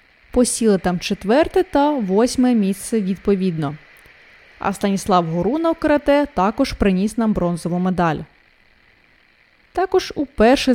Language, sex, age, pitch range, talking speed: Ukrainian, female, 20-39, 190-260 Hz, 100 wpm